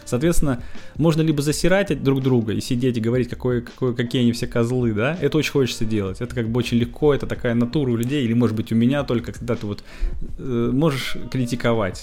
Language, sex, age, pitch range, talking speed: Russian, male, 20-39, 115-140 Hz, 205 wpm